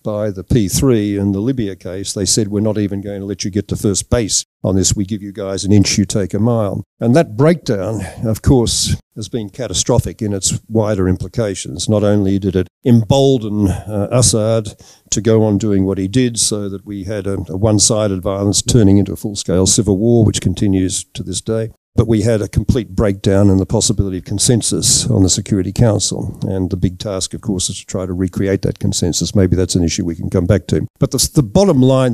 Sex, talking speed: male, 220 wpm